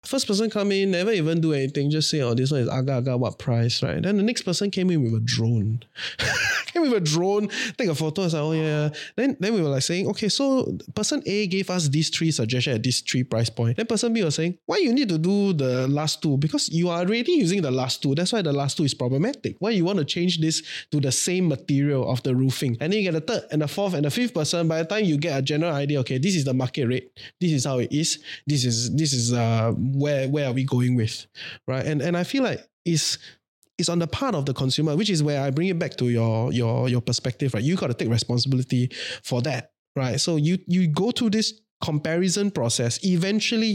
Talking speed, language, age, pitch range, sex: 260 wpm, English, 20-39, 125-175 Hz, male